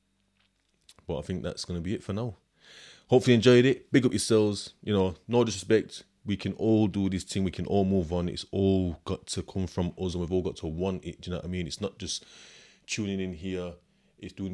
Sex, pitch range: male, 90-100 Hz